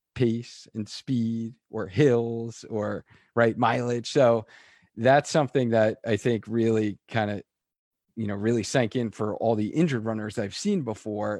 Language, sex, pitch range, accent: English, male, 105-125 Hz, American